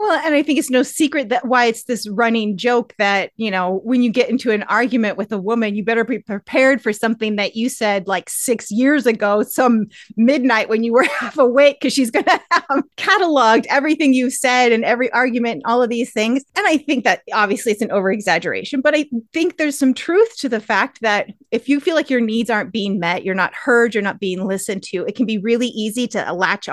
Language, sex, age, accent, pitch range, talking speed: English, female, 30-49, American, 215-290 Hz, 235 wpm